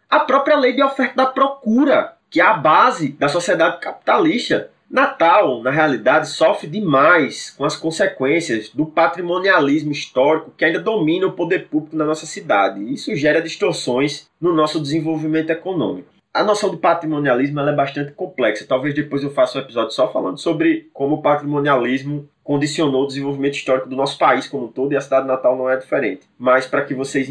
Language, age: Portuguese, 20-39